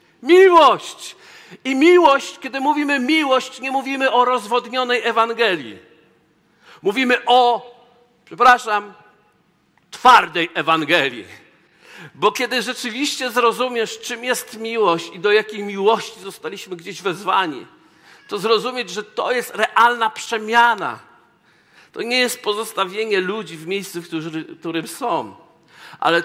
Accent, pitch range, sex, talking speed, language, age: native, 180-245 Hz, male, 110 wpm, Polish, 50-69